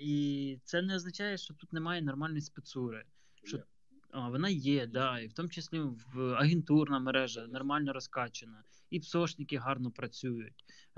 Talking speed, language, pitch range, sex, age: 150 wpm, Ukrainian, 120-150 Hz, male, 20-39